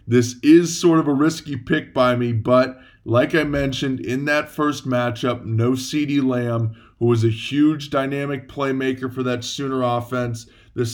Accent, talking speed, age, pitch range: American, 170 wpm, 20-39, 125-150 Hz